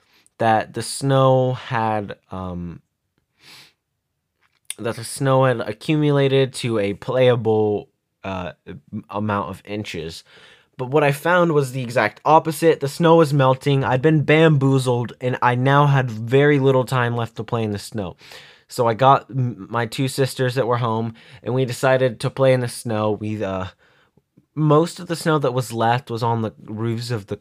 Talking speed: 170 wpm